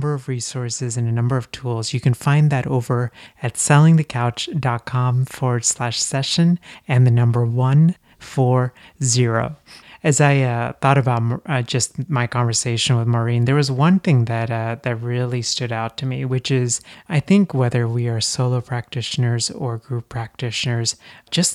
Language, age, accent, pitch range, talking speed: English, 30-49, American, 115-135 Hz, 165 wpm